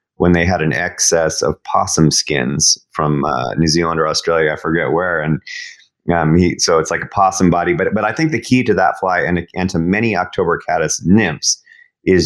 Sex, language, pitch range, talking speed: male, English, 80-110 Hz, 210 wpm